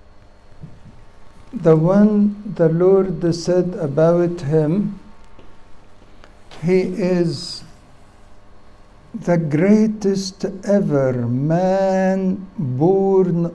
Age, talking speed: 60-79, 60 wpm